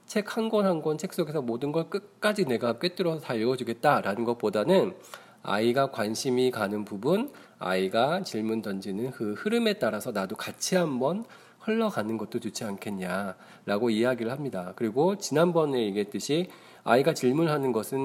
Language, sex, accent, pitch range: Korean, male, native, 105-160 Hz